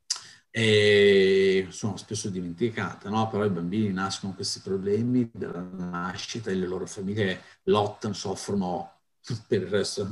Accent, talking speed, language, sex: native, 135 wpm, Italian, male